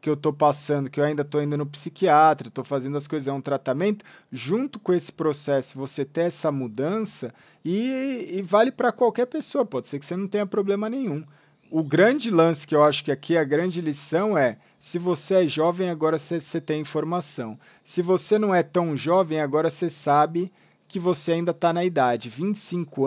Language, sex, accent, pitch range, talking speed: Portuguese, male, Brazilian, 145-185 Hz, 200 wpm